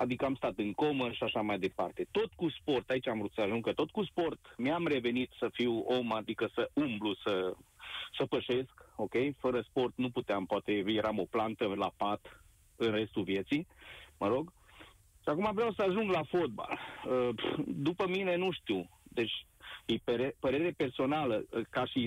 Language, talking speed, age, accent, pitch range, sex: Romanian, 175 wpm, 30-49, native, 115-180 Hz, male